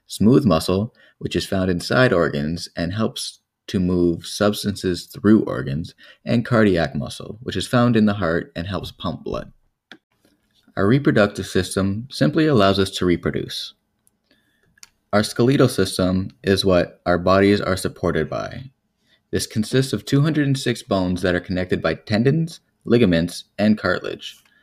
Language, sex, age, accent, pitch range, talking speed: English, male, 20-39, American, 90-125 Hz, 140 wpm